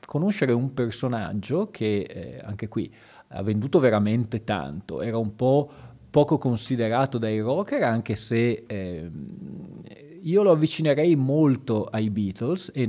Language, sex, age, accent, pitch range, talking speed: Italian, male, 40-59, native, 105-130 Hz, 130 wpm